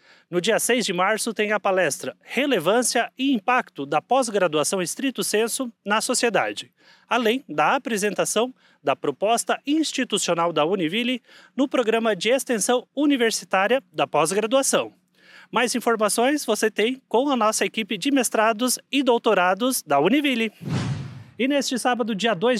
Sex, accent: male, Brazilian